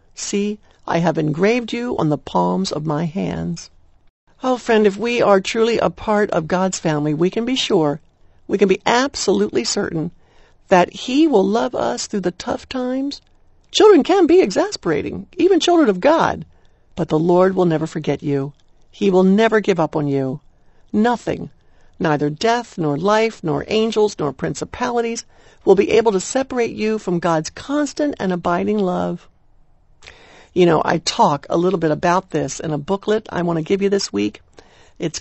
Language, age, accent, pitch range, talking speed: English, 60-79, American, 165-230 Hz, 175 wpm